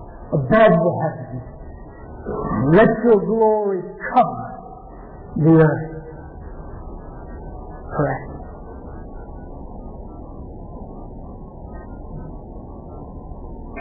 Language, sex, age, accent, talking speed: English, male, 50-69, American, 45 wpm